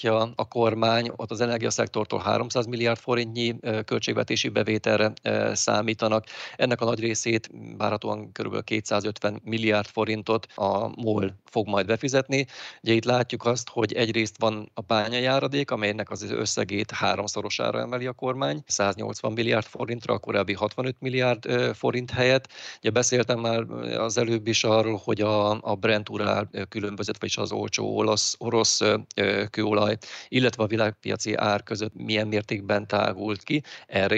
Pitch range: 105-120 Hz